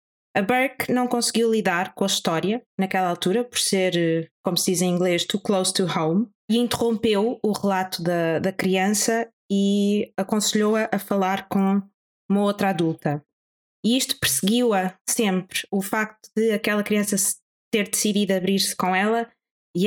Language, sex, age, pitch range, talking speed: Portuguese, female, 20-39, 185-230 Hz, 155 wpm